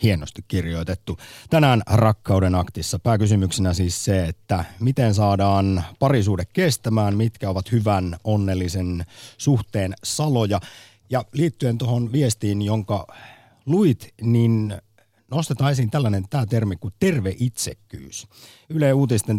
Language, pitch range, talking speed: Finnish, 95-125 Hz, 110 wpm